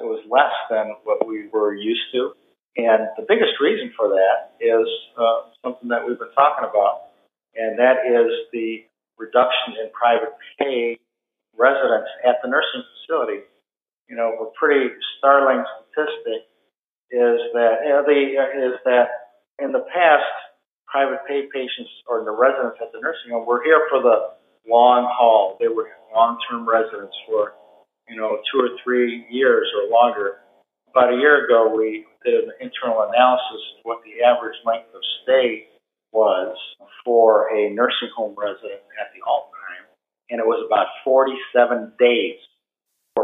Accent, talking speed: American, 160 wpm